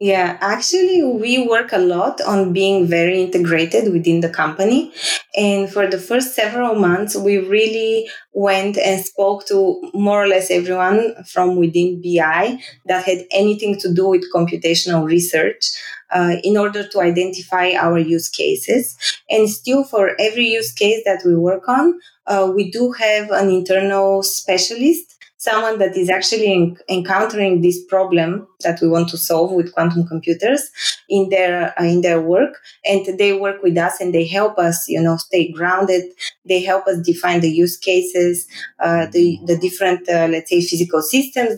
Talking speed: 165 wpm